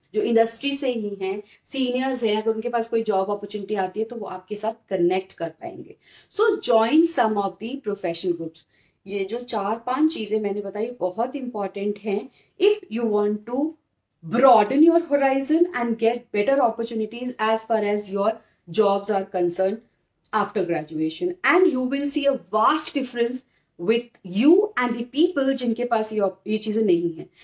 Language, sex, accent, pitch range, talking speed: English, female, Indian, 205-275 Hz, 165 wpm